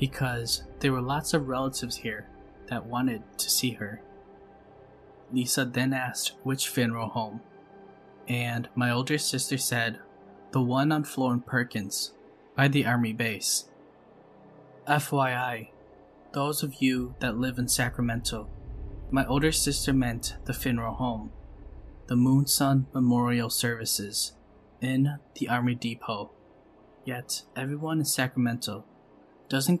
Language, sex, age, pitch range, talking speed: English, male, 10-29, 115-135 Hz, 125 wpm